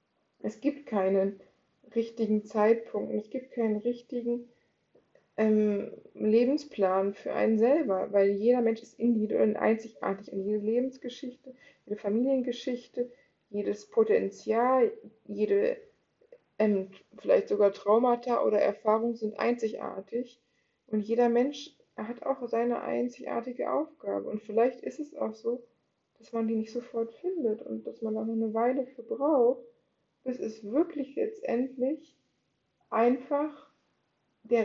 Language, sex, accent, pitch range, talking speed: German, female, German, 215-260 Hz, 125 wpm